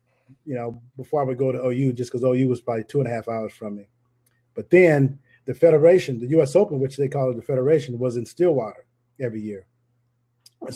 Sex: male